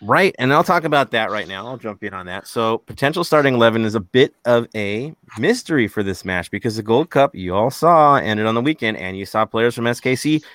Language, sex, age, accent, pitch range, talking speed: English, male, 30-49, American, 95-125 Hz, 245 wpm